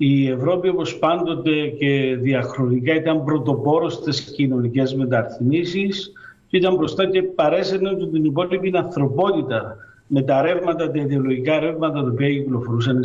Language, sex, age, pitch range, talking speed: Greek, male, 50-69, 140-185 Hz, 135 wpm